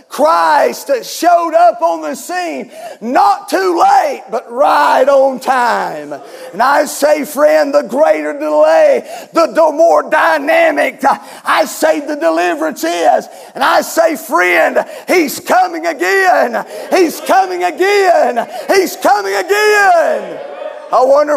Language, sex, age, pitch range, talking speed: English, male, 40-59, 280-345 Hz, 125 wpm